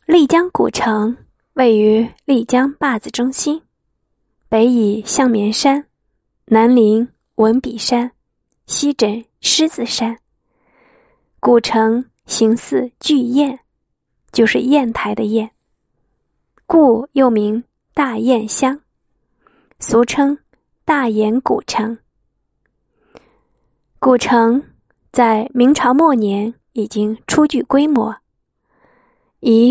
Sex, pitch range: female, 225-275 Hz